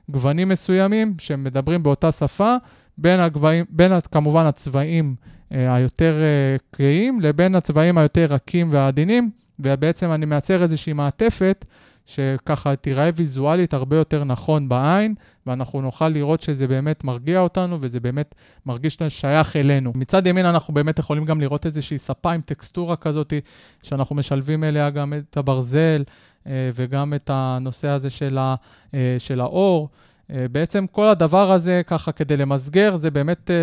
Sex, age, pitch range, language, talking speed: male, 20-39, 140-175 Hz, Hebrew, 135 wpm